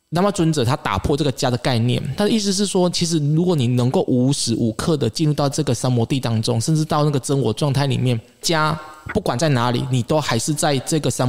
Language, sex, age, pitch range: Chinese, male, 20-39, 130-165 Hz